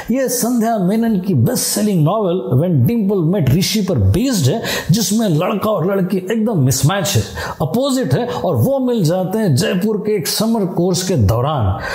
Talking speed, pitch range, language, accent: 155 wpm, 170-220 Hz, Hindi, native